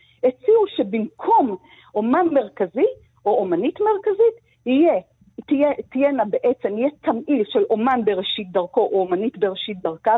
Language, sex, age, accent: Hebrew, female, 50-69, native